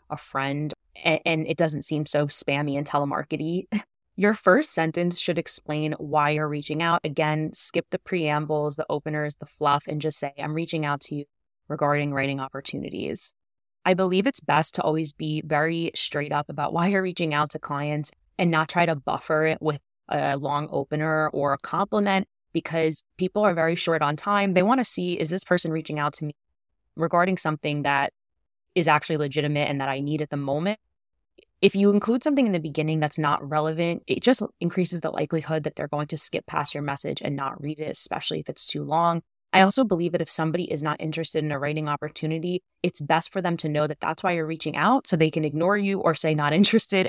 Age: 20-39